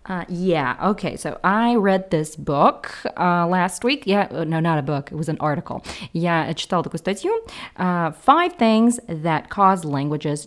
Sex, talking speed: female, 160 wpm